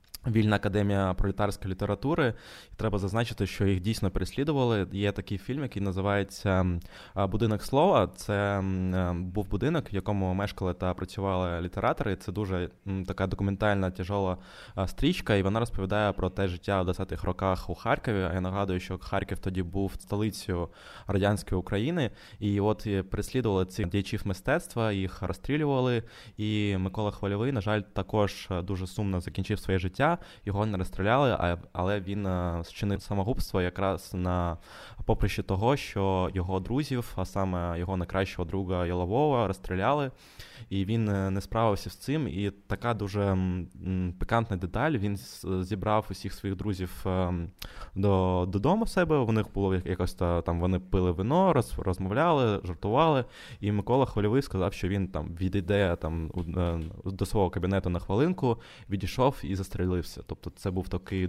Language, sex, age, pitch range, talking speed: Ukrainian, male, 20-39, 95-105 Hz, 145 wpm